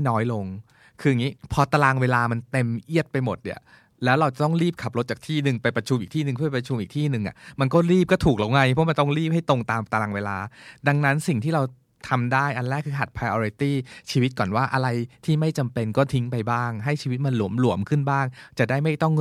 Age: 20-39